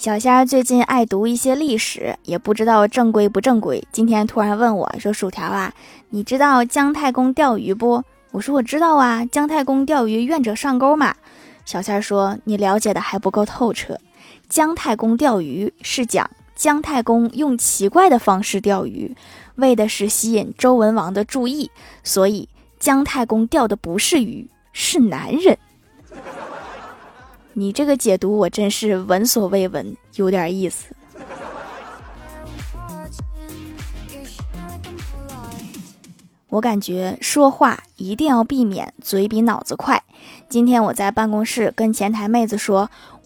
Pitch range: 205-270 Hz